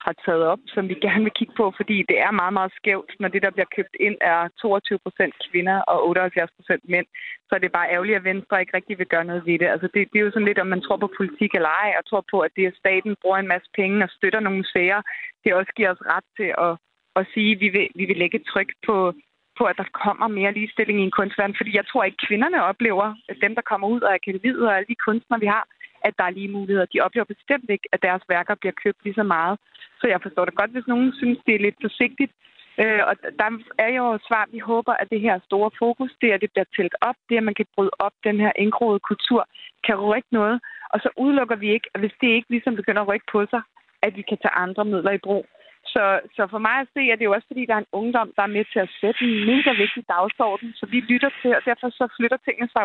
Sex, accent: female, native